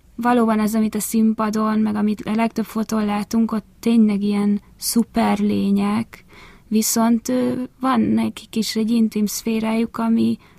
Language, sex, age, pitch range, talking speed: Hungarian, female, 20-39, 210-225 Hz, 125 wpm